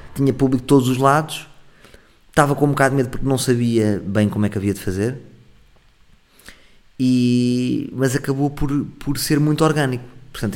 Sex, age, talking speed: male, 20-39, 175 wpm